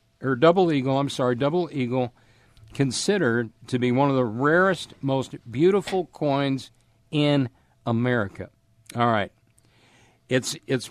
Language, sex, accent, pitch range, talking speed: English, male, American, 115-145 Hz, 125 wpm